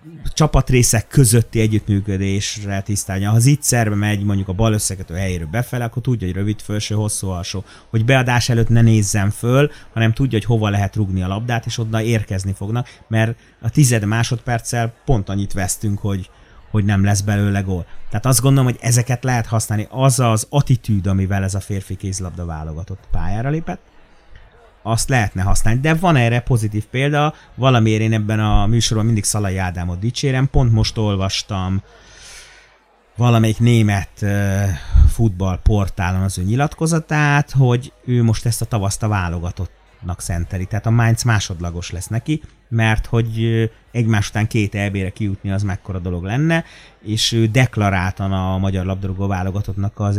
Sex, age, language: male, 30-49, Hungarian